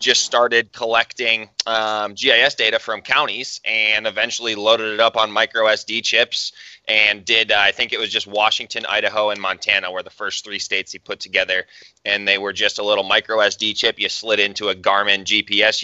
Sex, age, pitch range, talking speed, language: male, 20-39, 105-115 Hz, 195 wpm, English